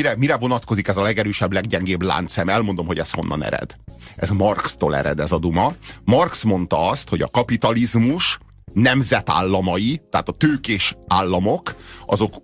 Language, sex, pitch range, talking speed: Hungarian, male, 95-125 Hz, 150 wpm